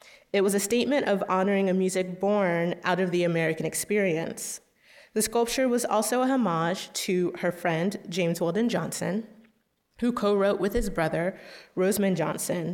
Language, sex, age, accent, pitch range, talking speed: English, female, 30-49, American, 170-200 Hz, 160 wpm